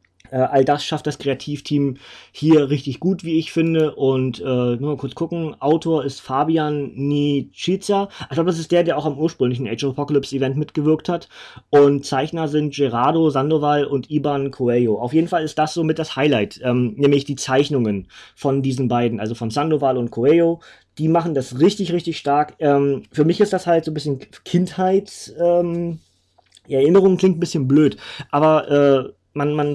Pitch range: 135-160 Hz